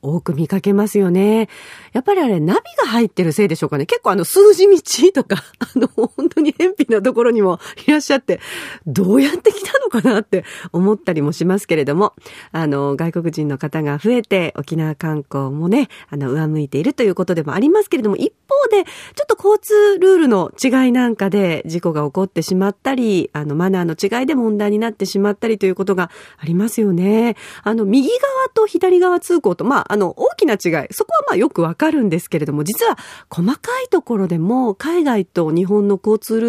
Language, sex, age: Japanese, female, 40-59